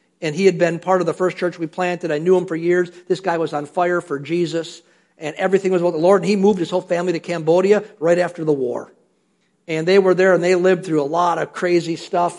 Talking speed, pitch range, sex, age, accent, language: 260 wpm, 165-210 Hz, male, 50-69, American, English